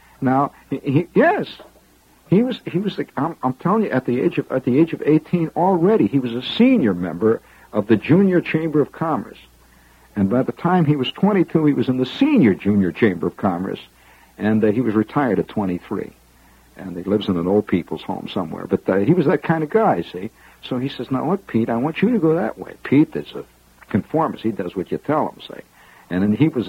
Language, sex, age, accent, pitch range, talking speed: English, male, 60-79, American, 95-145 Hz, 230 wpm